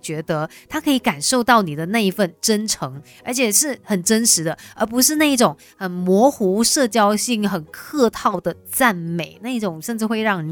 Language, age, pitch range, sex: Chinese, 20-39, 180-245 Hz, female